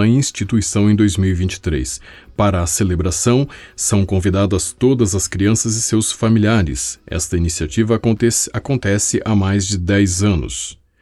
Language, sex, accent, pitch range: Portuguese, male, Brazilian, 90-115 Hz